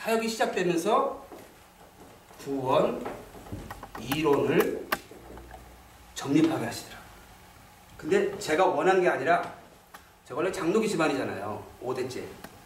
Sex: male